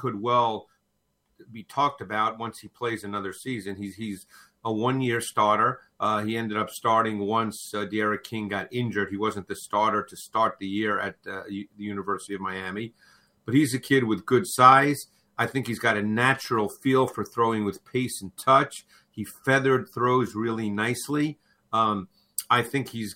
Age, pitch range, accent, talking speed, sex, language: 50-69, 105-135 Hz, American, 180 wpm, male, English